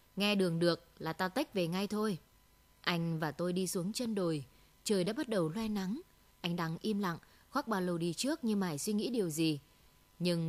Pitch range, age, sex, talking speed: 170-215 Hz, 20-39, female, 215 wpm